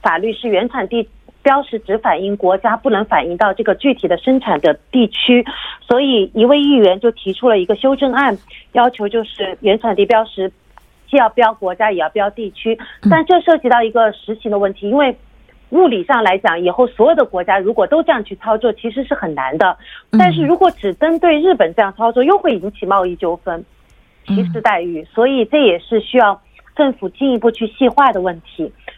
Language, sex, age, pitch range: Korean, female, 40-59, 205-255 Hz